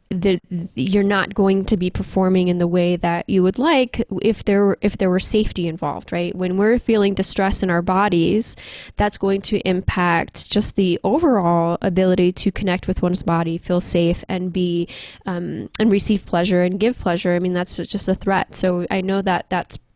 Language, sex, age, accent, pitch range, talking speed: English, female, 10-29, American, 180-210 Hz, 195 wpm